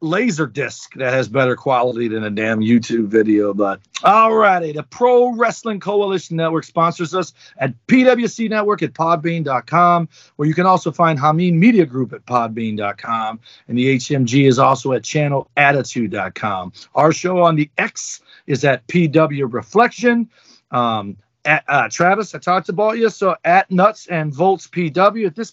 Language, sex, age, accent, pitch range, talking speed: English, male, 40-59, American, 130-190 Hz, 160 wpm